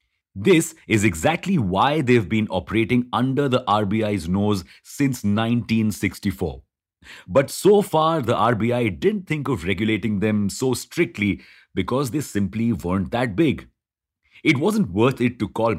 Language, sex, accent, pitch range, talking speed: English, male, Indian, 100-125 Hz, 140 wpm